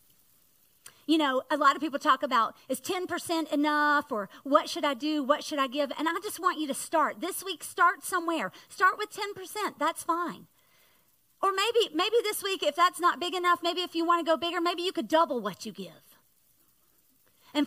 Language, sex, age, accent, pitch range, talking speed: English, female, 40-59, American, 280-360 Hz, 205 wpm